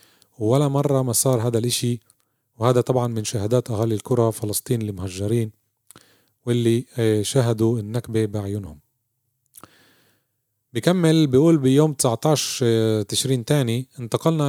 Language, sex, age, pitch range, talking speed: Arabic, male, 30-49, 115-140 Hz, 105 wpm